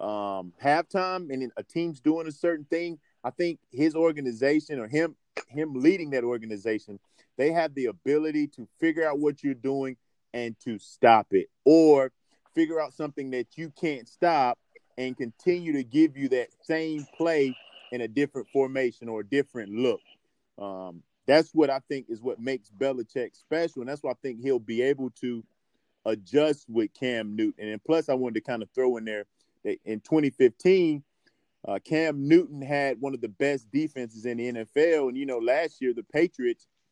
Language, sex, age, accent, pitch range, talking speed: English, male, 30-49, American, 115-155 Hz, 180 wpm